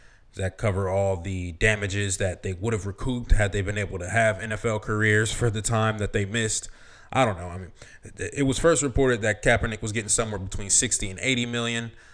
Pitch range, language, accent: 100-125 Hz, English, American